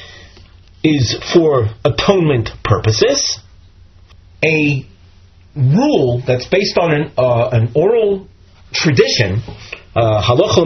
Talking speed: 85 wpm